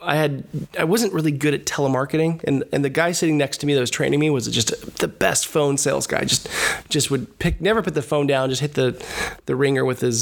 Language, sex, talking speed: English, male, 260 wpm